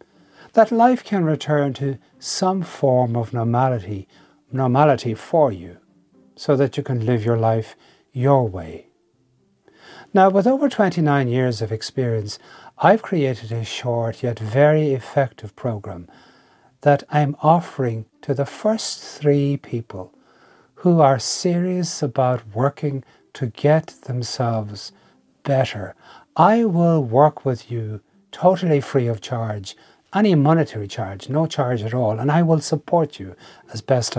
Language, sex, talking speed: English, male, 135 wpm